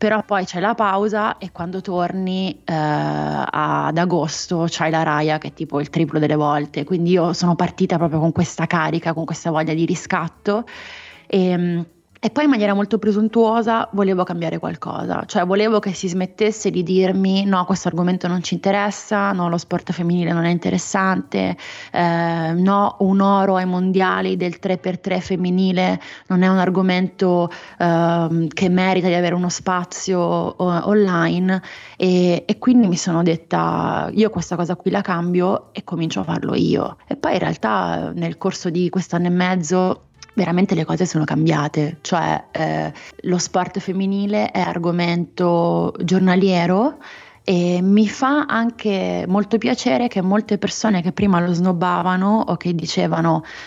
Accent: native